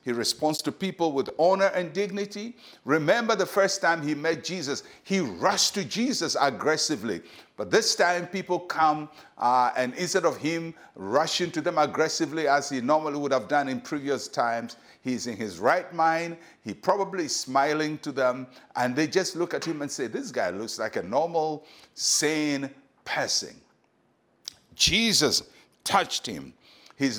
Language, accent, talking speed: English, Nigerian, 160 wpm